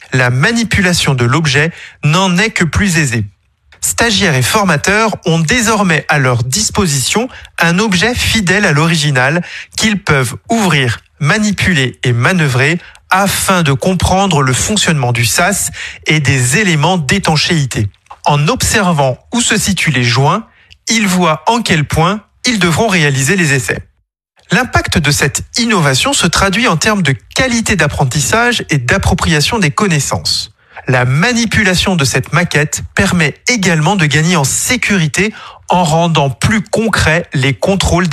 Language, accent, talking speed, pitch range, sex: French, French, 140 wpm, 135-195 Hz, male